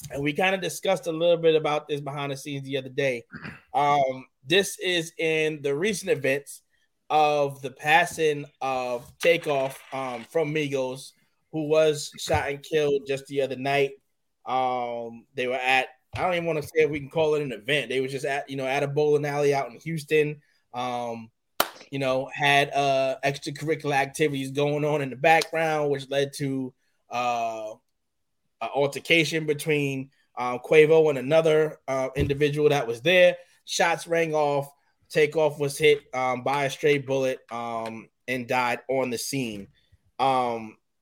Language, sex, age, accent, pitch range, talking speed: English, male, 20-39, American, 130-155 Hz, 170 wpm